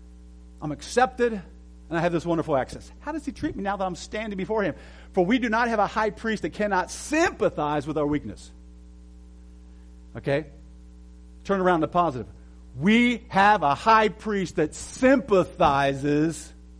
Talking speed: 160 wpm